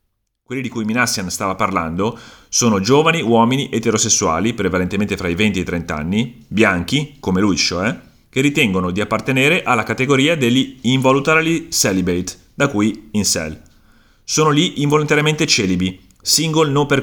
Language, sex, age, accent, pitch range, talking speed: Italian, male, 30-49, native, 90-125 Hz, 140 wpm